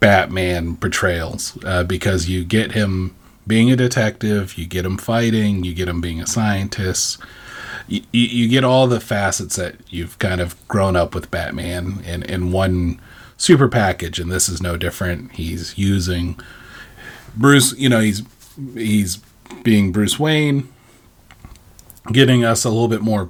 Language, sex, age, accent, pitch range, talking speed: English, male, 30-49, American, 90-115 Hz, 155 wpm